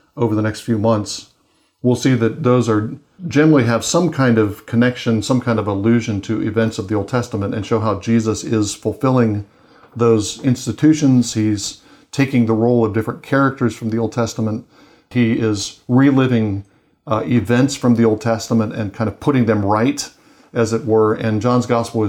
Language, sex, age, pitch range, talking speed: English, male, 40-59, 105-120 Hz, 180 wpm